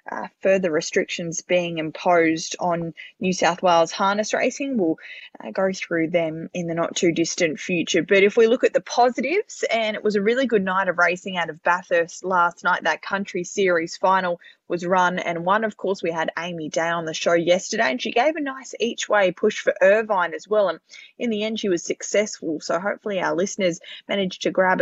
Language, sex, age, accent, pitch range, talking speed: English, female, 20-39, Australian, 170-205 Hz, 210 wpm